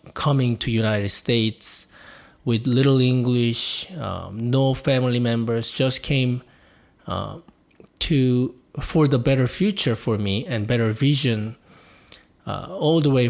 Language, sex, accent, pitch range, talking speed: English, male, Japanese, 115-140 Hz, 125 wpm